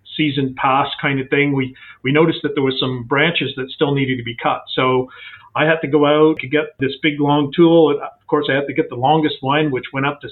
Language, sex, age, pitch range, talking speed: English, male, 40-59, 130-155 Hz, 260 wpm